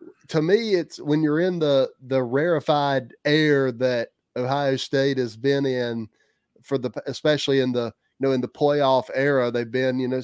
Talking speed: 180 wpm